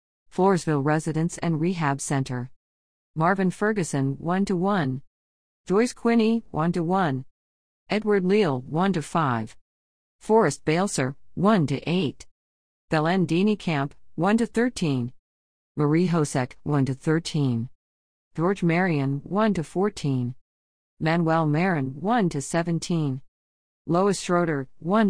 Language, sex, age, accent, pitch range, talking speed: English, female, 50-69, American, 125-185 Hz, 115 wpm